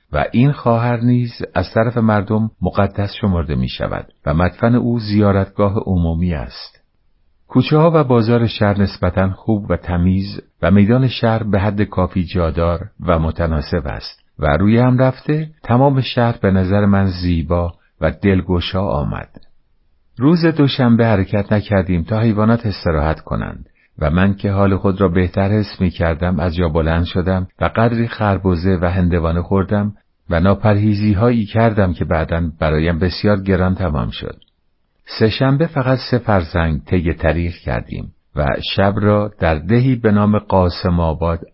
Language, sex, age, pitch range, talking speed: Persian, male, 50-69, 85-105 Hz, 150 wpm